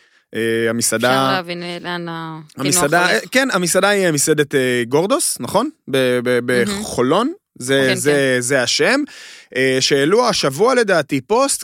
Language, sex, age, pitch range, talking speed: Hebrew, male, 30-49, 130-200 Hz, 95 wpm